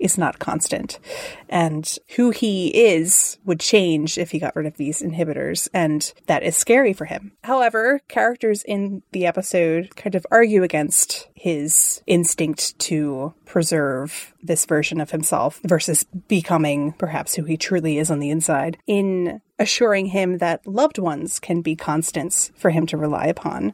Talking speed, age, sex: 160 wpm, 30-49, female